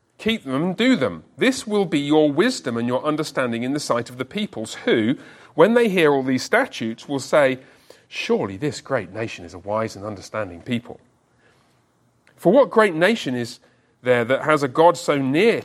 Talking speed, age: 190 wpm, 40-59